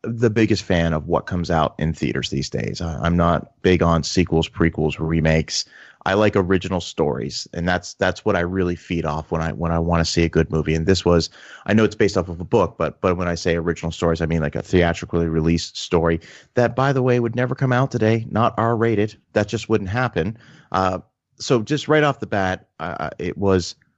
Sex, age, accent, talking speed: male, 30-49, American, 225 wpm